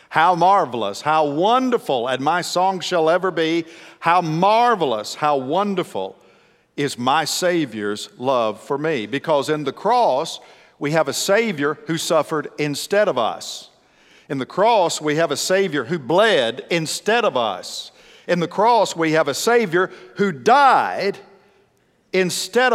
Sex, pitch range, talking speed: male, 140-190 Hz, 145 wpm